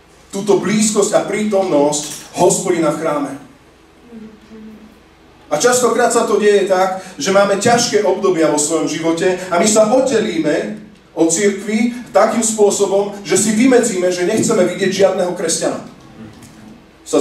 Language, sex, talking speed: Slovak, male, 130 wpm